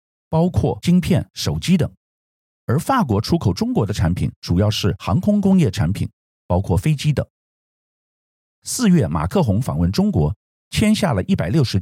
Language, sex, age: Chinese, male, 50-69